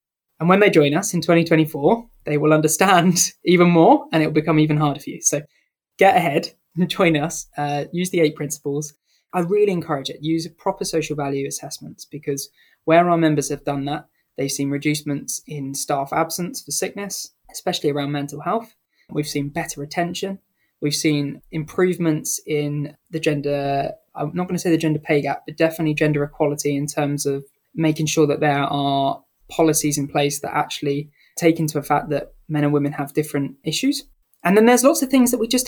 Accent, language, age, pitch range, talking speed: British, English, 20-39, 145-175 Hz, 195 wpm